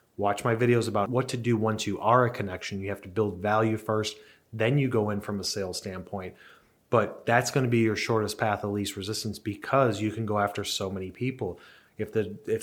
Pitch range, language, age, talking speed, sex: 105-115 Hz, English, 30-49, 220 wpm, male